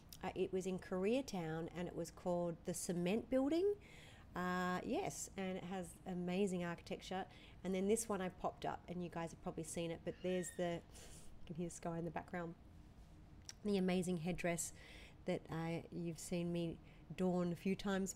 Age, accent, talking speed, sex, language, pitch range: 40-59, Australian, 185 wpm, female, English, 175-210 Hz